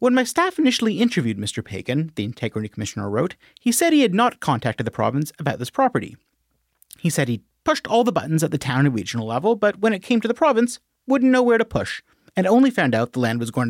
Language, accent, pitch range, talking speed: English, American, 130-210 Hz, 240 wpm